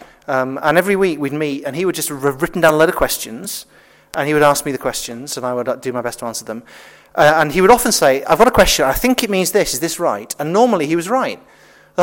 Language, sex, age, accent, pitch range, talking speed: English, male, 30-49, British, 150-200 Hz, 285 wpm